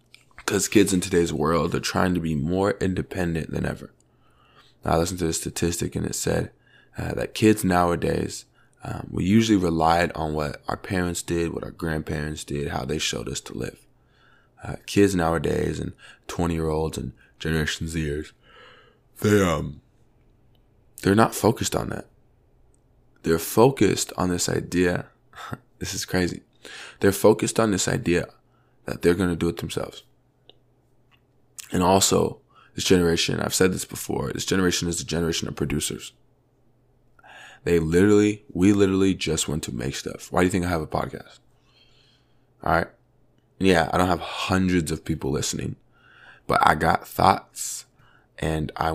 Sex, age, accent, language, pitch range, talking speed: male, 20-39, American, English, 80-95 Hz, 155 wpm